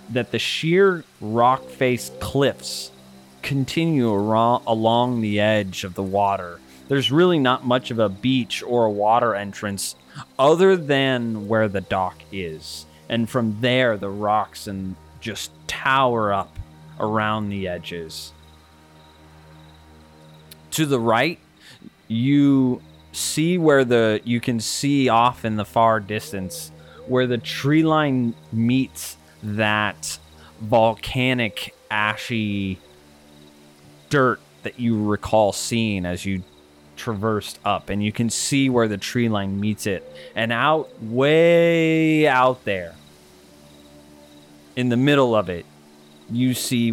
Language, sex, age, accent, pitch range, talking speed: English, male, 20-39, American, 80-125 Hz, 125 wpm